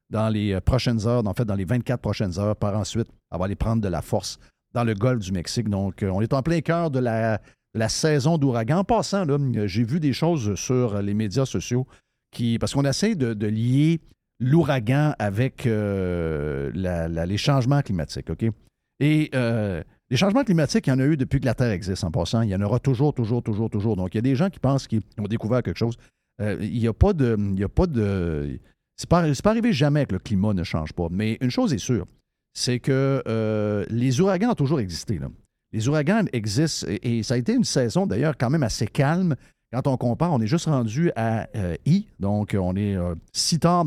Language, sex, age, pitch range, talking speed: French, male, 50-69, 105-140 Hz, 235 wpm